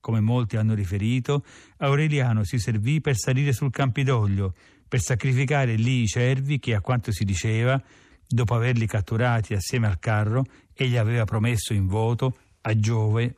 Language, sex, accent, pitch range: Italian, male, native, 105-125 Hz